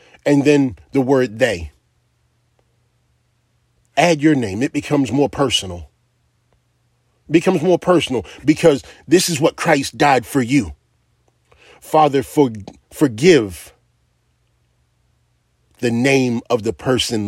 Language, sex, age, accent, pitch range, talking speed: English, male, 40-59, American, 120-160 Hz, 105 wpm